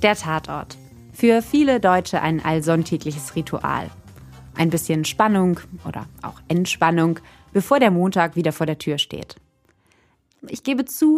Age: 20-39